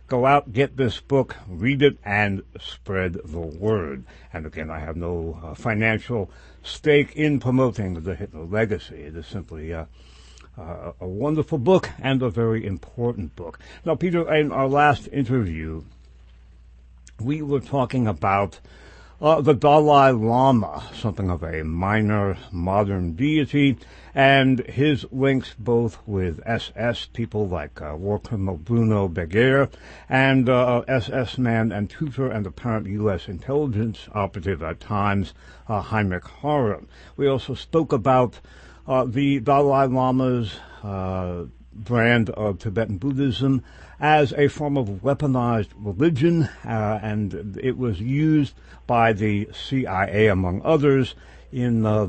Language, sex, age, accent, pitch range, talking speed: English, male, 60-79, American, 90-130 Hz, 135 wpm